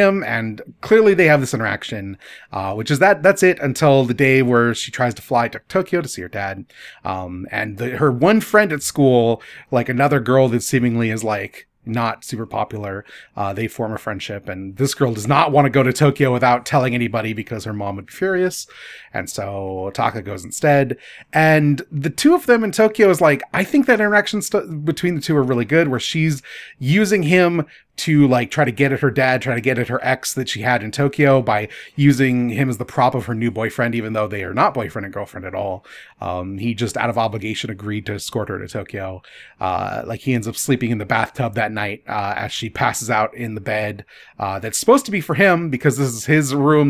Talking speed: 230 wpm